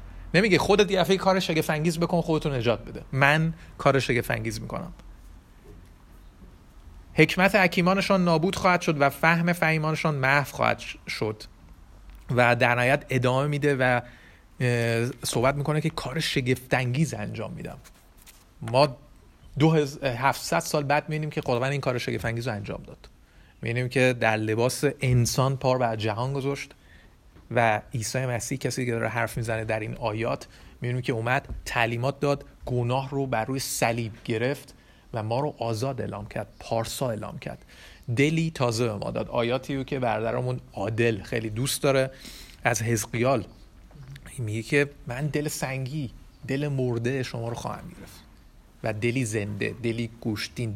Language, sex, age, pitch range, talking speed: Persian, male, 30-49, 115-145 Hz, 140 wpm